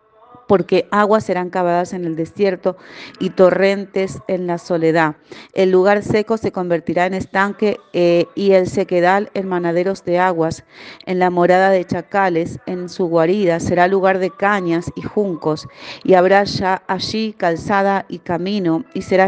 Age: 40-59